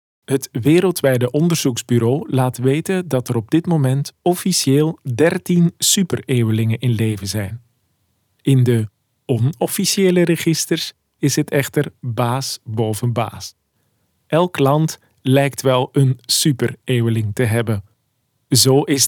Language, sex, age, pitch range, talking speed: Dutch, male, 40-59, 120-150 Hz, 115 wpm